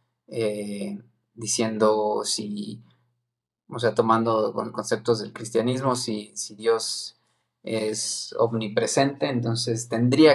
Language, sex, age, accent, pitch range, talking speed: Spanish, male, 20-39, Mexican, 110-120 Hz, 100 wpm